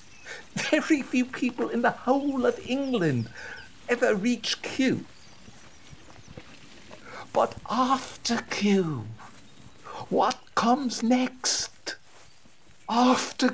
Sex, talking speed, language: male, 80 wpm, English